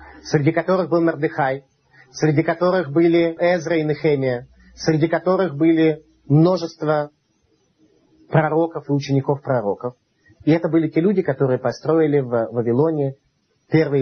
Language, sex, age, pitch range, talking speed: Russian, male, 30-49, 130-180 Hz, 120 wpm